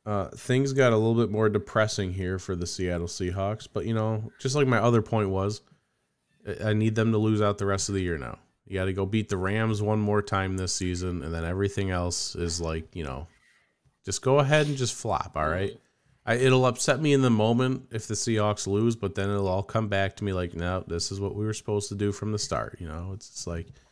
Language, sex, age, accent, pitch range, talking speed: English, male, 30-49, American, 85-110 Hz, 245 wpm